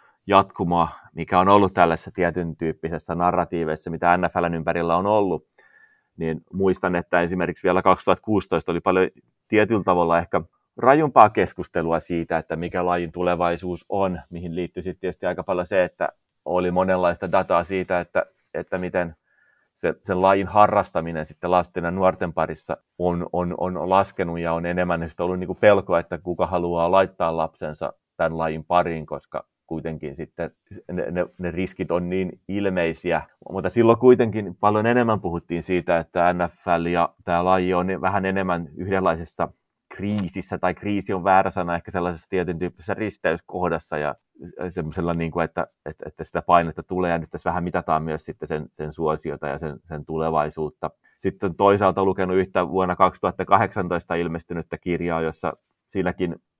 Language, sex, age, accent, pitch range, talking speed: Finnish, male, 30-49, native, 85-95 Hz, 155 wpm